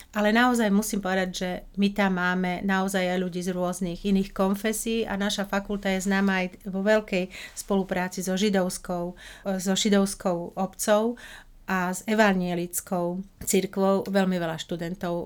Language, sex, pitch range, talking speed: Slovak, female, 180-205 Hz, 140 wpm